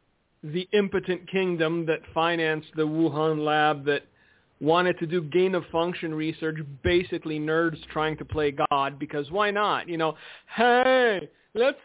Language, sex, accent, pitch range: English, male, American, 170-215 Hz